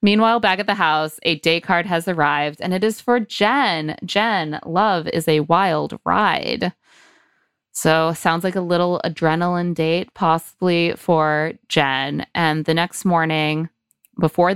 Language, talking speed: English, 150 wpm